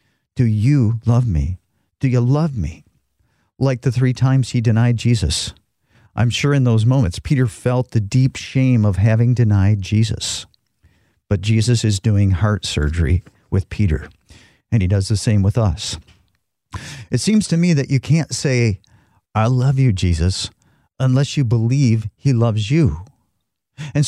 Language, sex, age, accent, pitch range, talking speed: English, male, 50-69, American, 100-130 Hz, 155 wpm